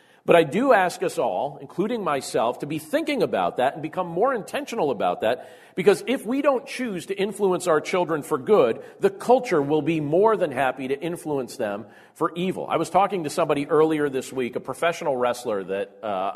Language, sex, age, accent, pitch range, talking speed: English, male, 40-59, American, 125-170 Hz, 200 wpm